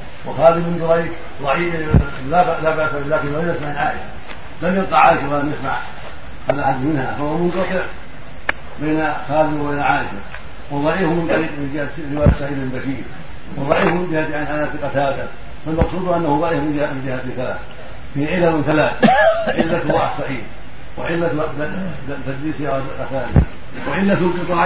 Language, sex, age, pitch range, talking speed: Arabic, male, 60-79, 140-165 Hz, 150 wpm